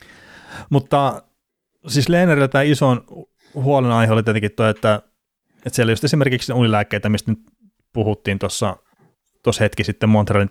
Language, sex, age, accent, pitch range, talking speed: Finnish, male, 30-49, native, 100-120 Hz, 125 wpm